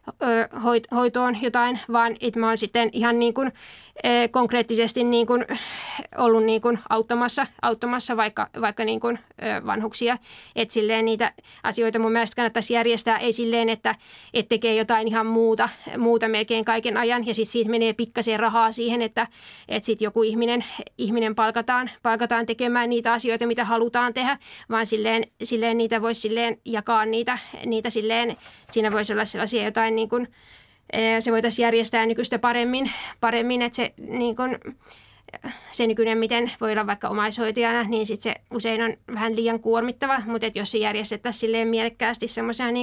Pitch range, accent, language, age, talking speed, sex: 225-240 Hz, native, Finnish, 20-39, 145 wpm, female